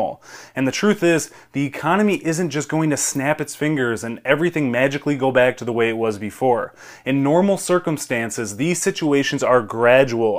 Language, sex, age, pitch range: English, male, 20-39, 125-155 Hz